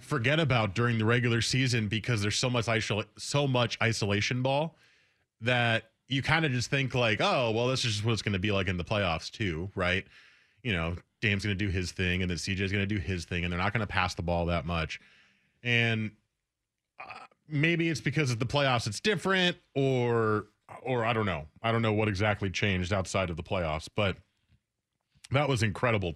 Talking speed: 210 wpm